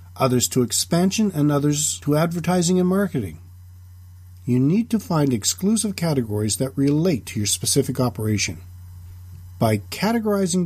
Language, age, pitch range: English, 40-59, 90-145 Hz